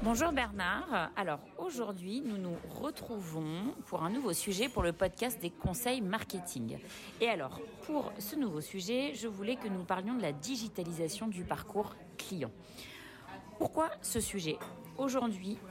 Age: 40-59